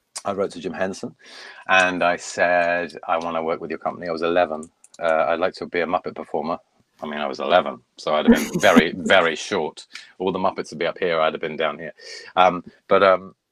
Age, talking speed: 30-49, 235 wpm